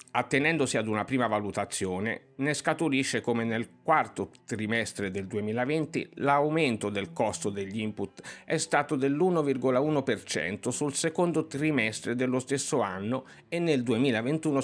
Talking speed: 125 wpm